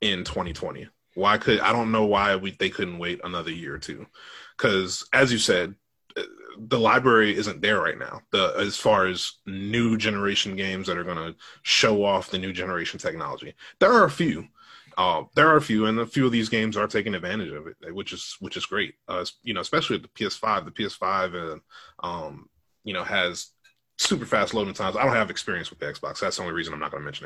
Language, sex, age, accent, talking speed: English, male, 30-49, American, 225 wpm